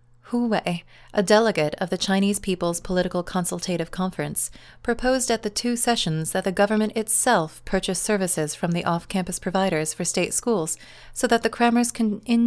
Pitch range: 170-210 Hz